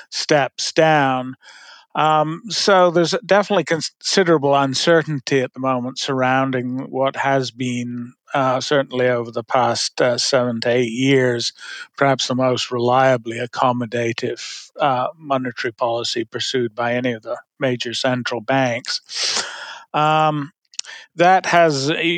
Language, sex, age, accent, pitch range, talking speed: English, male, 50-69, American, 125-145 Hz, 120 wpm